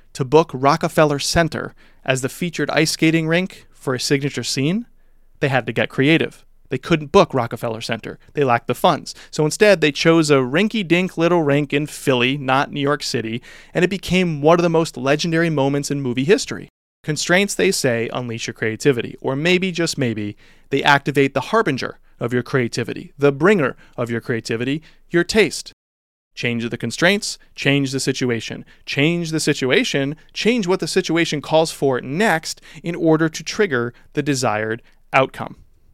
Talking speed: 170 wpm